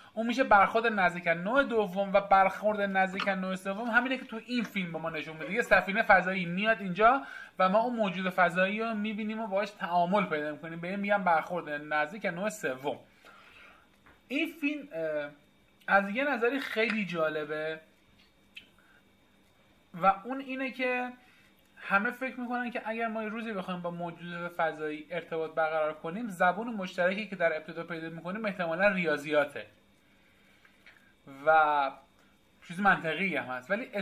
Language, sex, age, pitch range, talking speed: Persian, male, 30-49, 170-225 Hz, 150 wpm